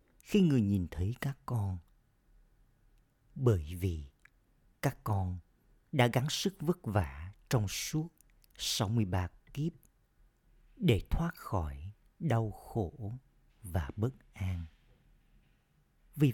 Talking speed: 110 wpm